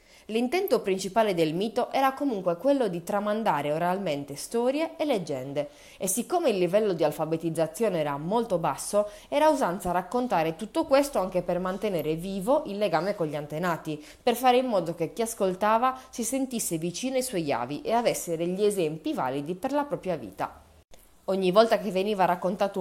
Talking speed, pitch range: 165 wpm, 165-235 Hz